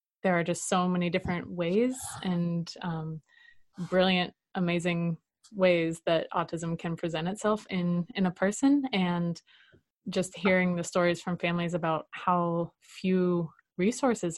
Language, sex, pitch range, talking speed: English, female, 165-185 Hz, 135 wpm